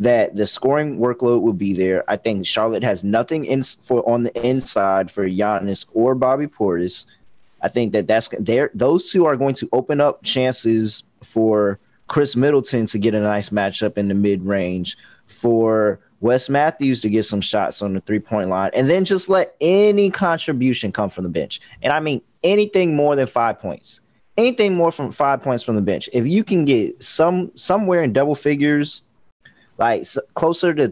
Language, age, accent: English, 20-39, American